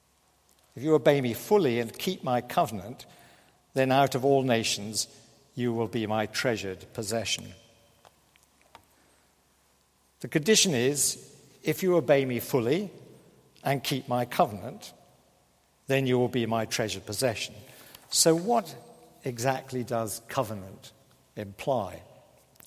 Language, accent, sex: English, British, male